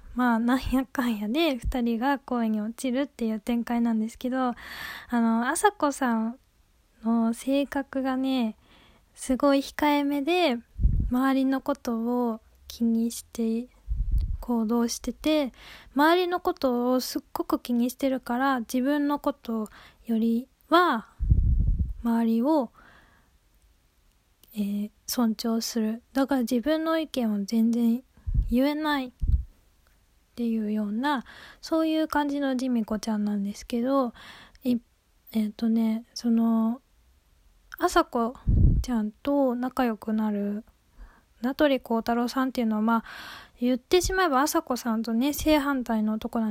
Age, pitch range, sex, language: 10-29, 230-275 Hz, female, Japanese